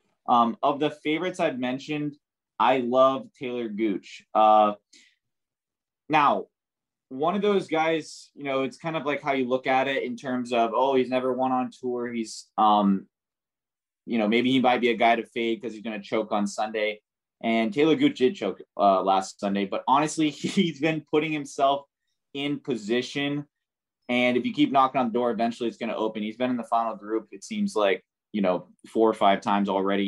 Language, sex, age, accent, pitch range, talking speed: English, male, 20-39, American, 110-145 Hz, 200 wpm